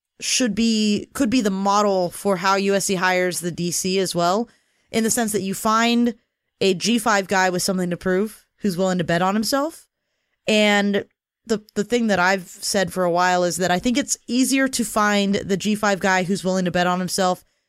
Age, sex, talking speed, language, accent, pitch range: 20-39, female, 205 wpm, English, American, 185-225 Hz